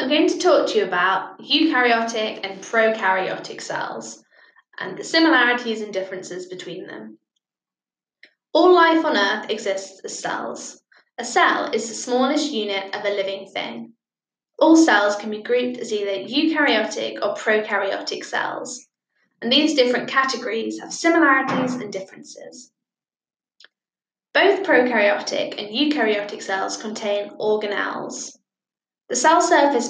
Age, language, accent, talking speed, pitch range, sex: 10-29, English, British, 125 wpm, 205-290 Hz, female